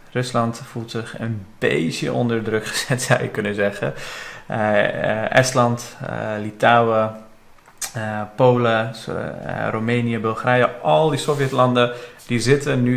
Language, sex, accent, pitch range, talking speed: Dutch, male, Dutch, 110-125 Hz, 125 wpm